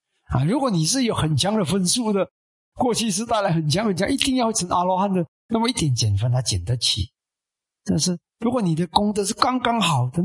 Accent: native